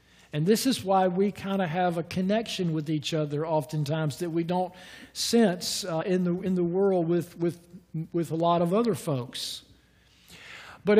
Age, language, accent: 50-69, English, American